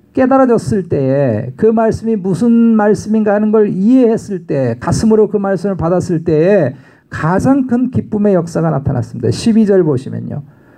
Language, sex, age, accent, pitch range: Korean, male, 50-69, native, 165-215 Hz